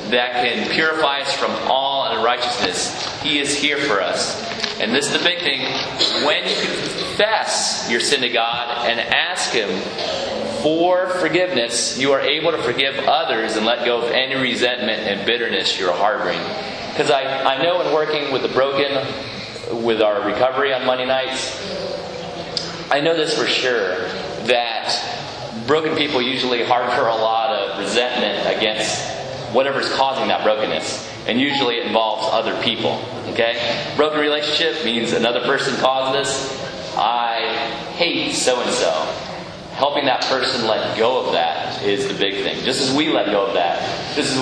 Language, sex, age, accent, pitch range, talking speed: English, male, 30-49, American, 115-140 Hz, 160 wpm